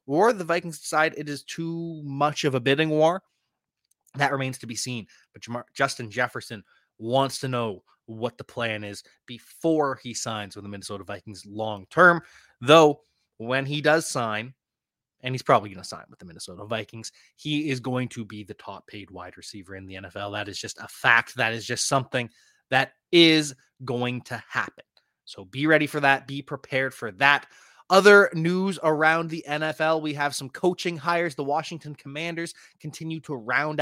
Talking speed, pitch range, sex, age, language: 180 wpm, 120-155 Hz, male, 20-39, English